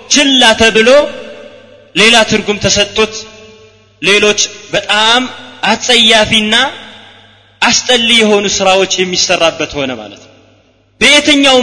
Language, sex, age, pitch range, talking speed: Amharic, male, 30-49, 180-225 Hz, 70 wpm